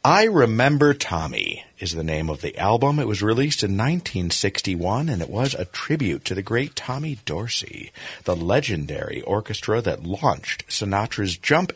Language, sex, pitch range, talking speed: English, male, 85-120 Hz, 160 wpm